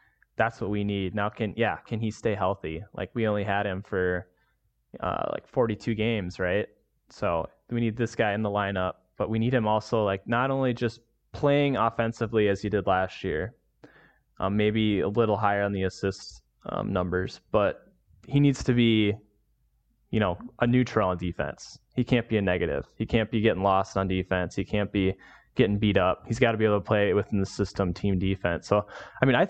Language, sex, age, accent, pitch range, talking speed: English, male, 20-39, American, 95-115 Hz, 205 wpm